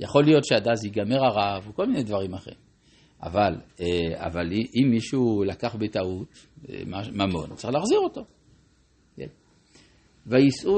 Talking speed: 120 wpm